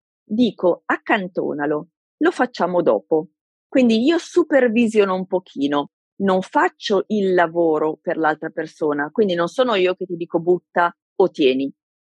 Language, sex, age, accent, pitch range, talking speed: Italian, female, 40-59, native, 170-245 Hz, 135 wpm